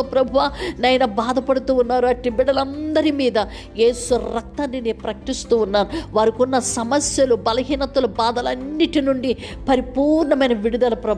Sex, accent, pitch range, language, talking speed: female, native, 200-250 Hz, Telugu, 95 wpm